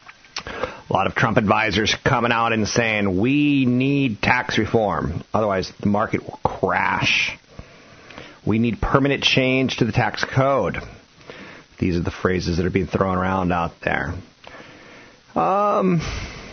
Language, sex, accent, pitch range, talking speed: English, male, American, 90-115 Hz, 140 wpm